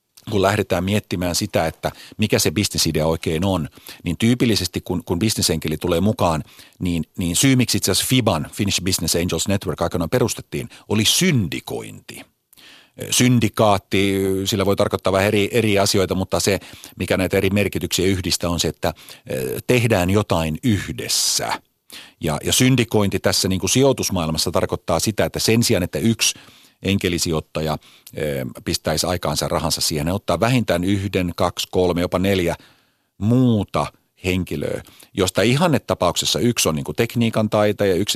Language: Finnish